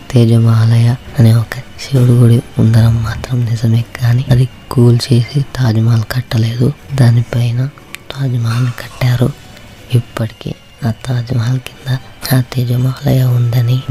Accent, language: native, Telugu